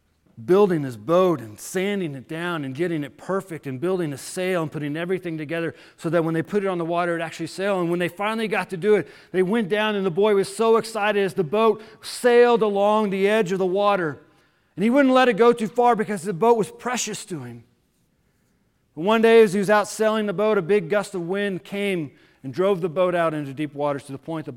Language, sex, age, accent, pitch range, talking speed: English, male, 40-59, American, 125-185 Hz, 245 wpm